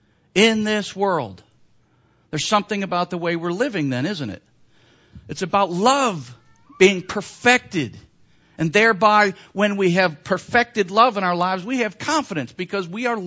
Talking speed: 155 wpm